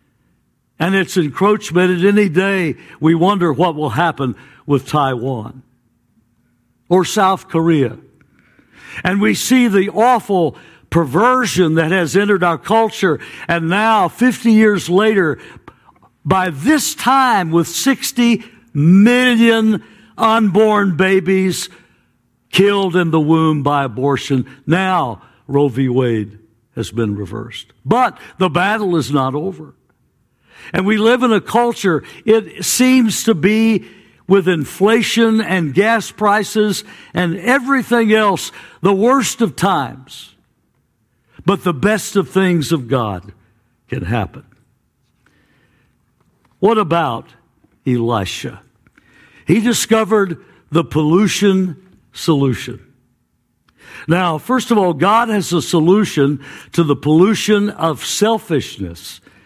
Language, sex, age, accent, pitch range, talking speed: English, male, 60-79, American, 145-210 Hz, 110 wpm